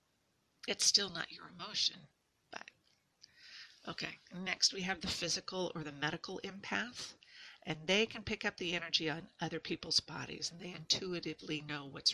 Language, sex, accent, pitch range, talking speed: English, female, American, 150-175 Hz, 160 wpm